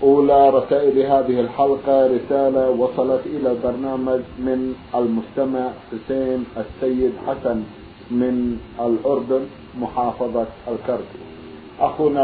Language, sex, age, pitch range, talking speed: Arabic, male, 50-69, 115-135 Hz, 90 wpm